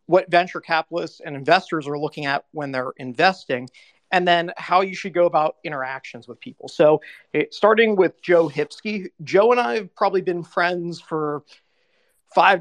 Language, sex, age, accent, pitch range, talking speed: English, male, 50-69, American, 150-185 Hz, 170 wpm